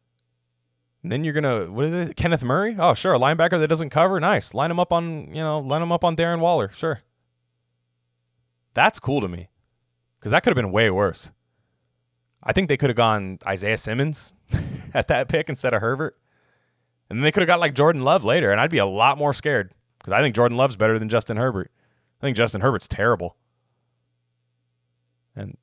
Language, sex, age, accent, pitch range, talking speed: English, male, 20-39, American, 95-140 Hz, 200 wpm